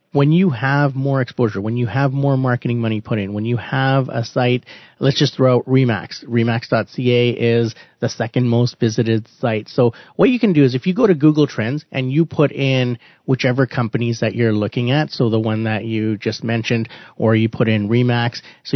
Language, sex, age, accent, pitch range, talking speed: English, male, 30-49, American, 115-135 Hz, 210 wpm